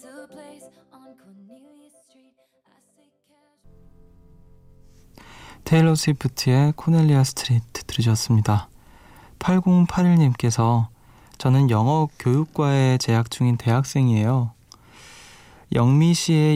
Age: 20-39